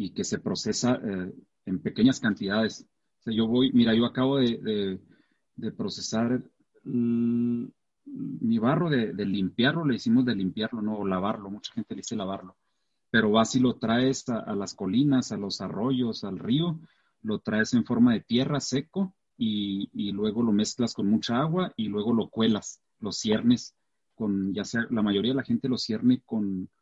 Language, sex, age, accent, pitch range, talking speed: Spanish, male, 40-59, Mexican, 100-155 Hz, 185 wpm